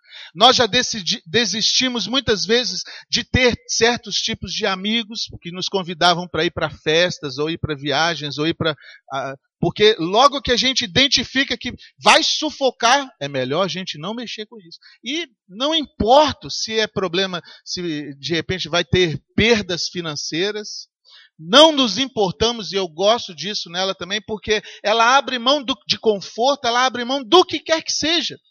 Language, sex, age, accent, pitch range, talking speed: Portuguese, male, 40-59, Brazilian, 175-235 Hz, 165 wpm